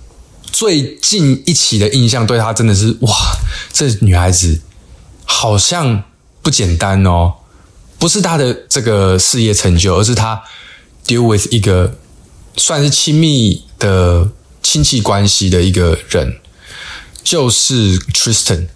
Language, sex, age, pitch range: Chinese, male, 20-39, 95-120 Hz